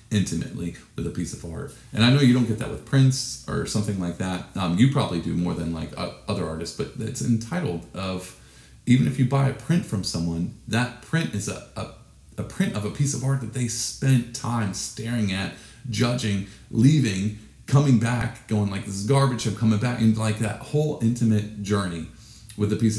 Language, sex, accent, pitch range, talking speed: English, male, American, 90-120 Hz, 205 wpm